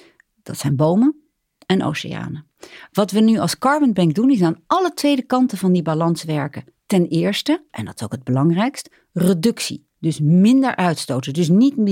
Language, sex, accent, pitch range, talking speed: Dutch, female, Dutch, 160-225 Hz, 175 wpm